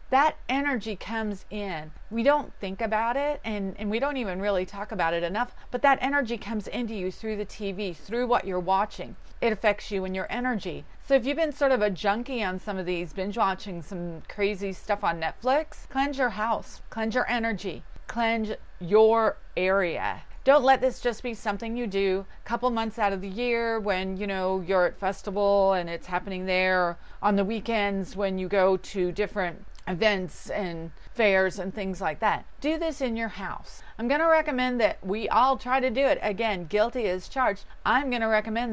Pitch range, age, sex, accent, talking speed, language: 190-240 Hz, 40-59, female, American, 195 wpm, English